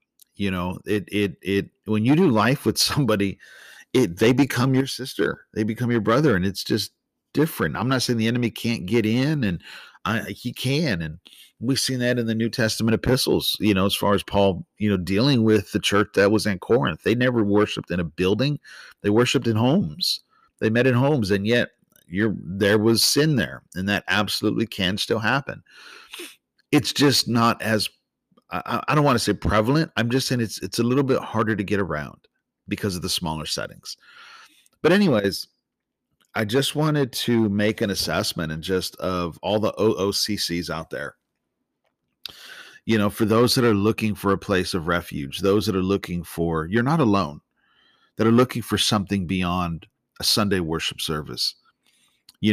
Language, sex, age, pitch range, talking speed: English, male, 50-69, 95-120 Hz, 185 wpm